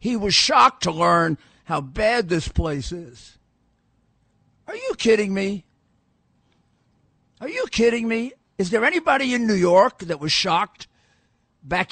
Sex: male